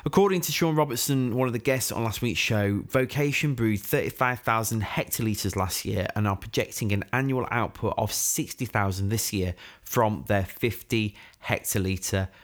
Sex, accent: male, British